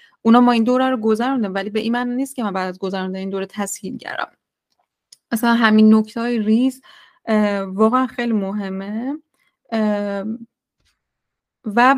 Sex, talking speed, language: female, 140 wpm, Persian